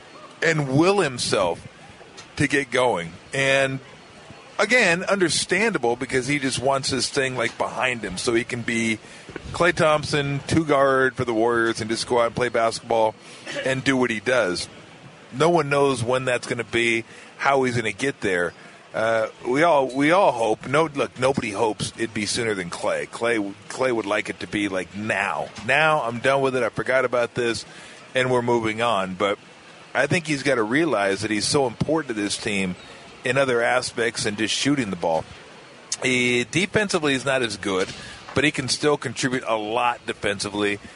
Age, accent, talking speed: 40-59, American, 185 wpm